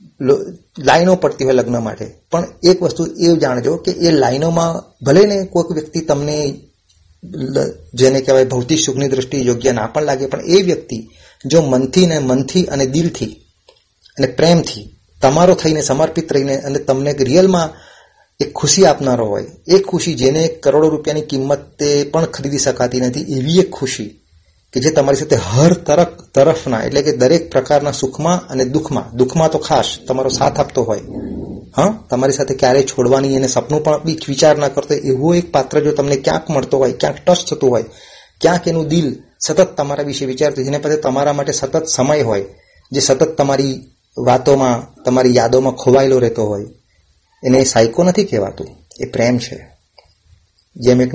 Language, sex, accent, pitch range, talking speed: Gujarati, male, native, 130-160 Hz, 135 wpm